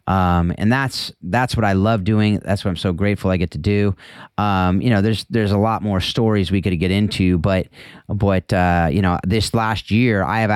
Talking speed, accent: 225 wpm, American